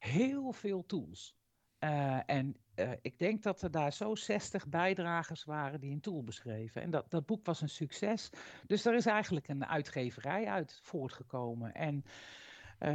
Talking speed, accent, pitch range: 165 wpm, Dutch, 130-175 Hz